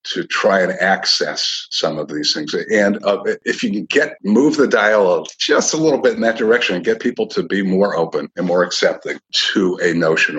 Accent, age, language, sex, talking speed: American, 50-69, English, male, 215 wpm